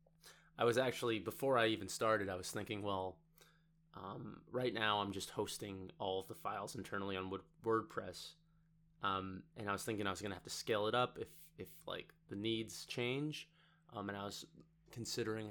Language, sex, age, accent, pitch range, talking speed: English, male, 20-39, American, 105-160 Hz, 190 wpm